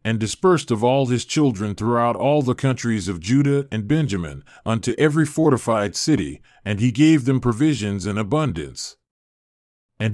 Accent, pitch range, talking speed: American, 110-145 Hz, 155 wpm